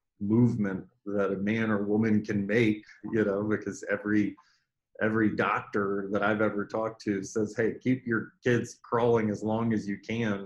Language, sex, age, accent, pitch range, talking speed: English, male, 30-49, American, 100-110 Hz, 170 wpm